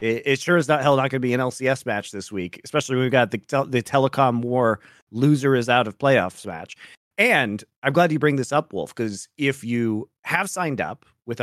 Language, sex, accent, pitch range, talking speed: English, male, American, 120-155 Hz, 210 wpm